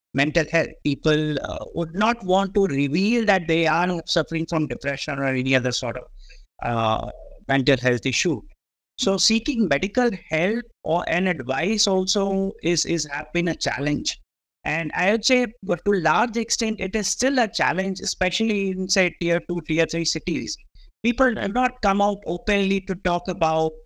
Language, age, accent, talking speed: English, 60-79, Indian, 175 wpm